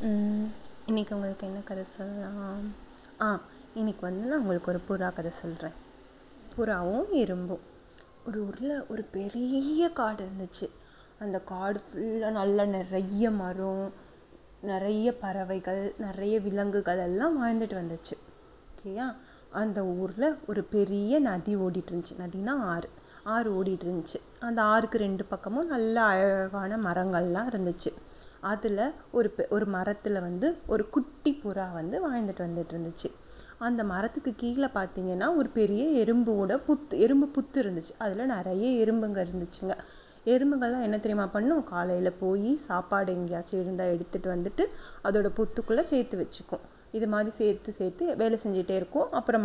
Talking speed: 125 wpm